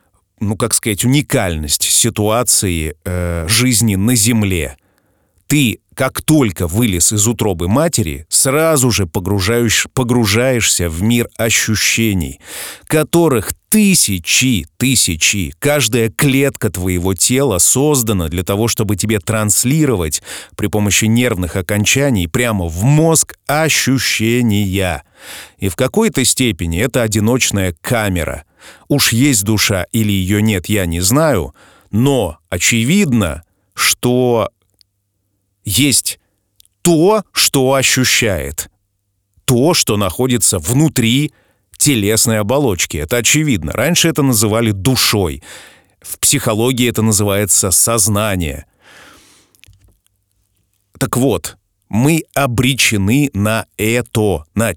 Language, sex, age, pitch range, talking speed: Russian, male, 30-49, 95-125 Hz, 100 wpm